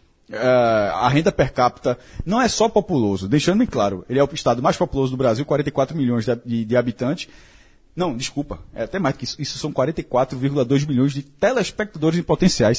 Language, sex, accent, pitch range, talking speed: Portuguese, male, Brazilian, 130-190 Hz, 190 wpm